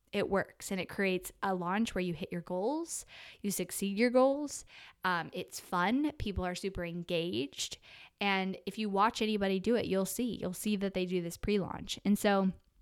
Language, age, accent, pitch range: English, 10-29, American, 180-210 Hz